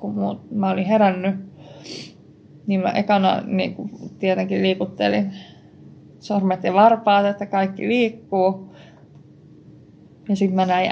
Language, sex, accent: Finnish, female, native